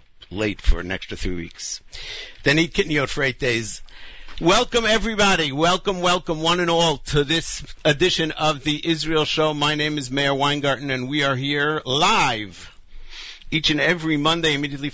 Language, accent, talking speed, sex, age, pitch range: English, American, 170 wpm, male, 50-69, 105-155 Hz